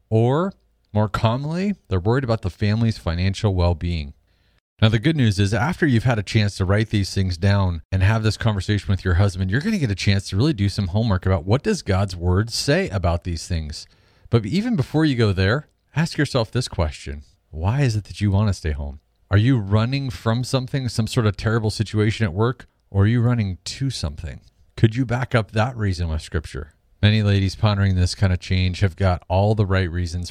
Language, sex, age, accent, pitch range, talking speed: English, male, 40-59, American, 90-115 Hz, 220 wpm